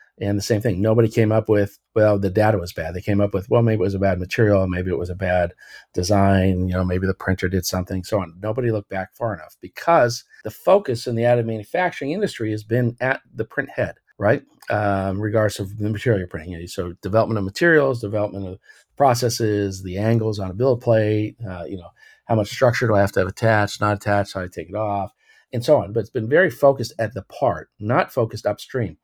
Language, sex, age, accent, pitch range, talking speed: English, male, 50-69, American, 100-120 Hz, 240 wpm